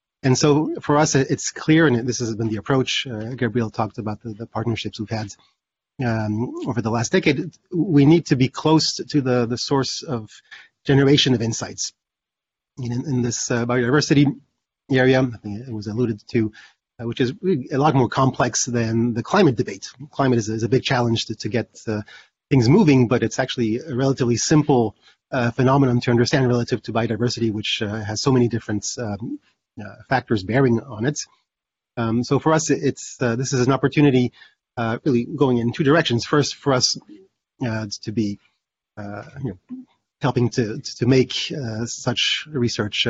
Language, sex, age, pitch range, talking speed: English, male, 30-49, 115-140 Hz, 180 wpm